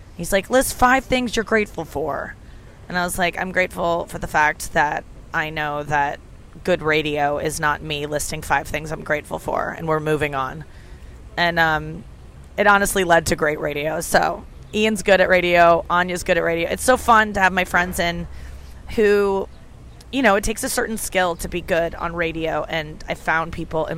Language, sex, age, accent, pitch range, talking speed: English, female, 20-39, American, 160-215 Hz, 200 wpm